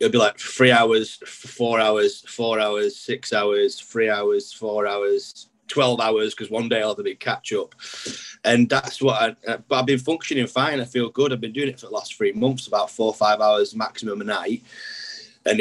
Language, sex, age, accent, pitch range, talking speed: English, male, 30-49, British, 115-140 Hz, 220 wpm